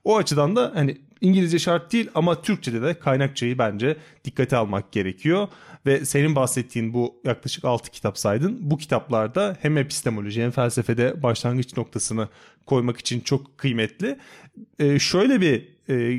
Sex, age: male, 30-49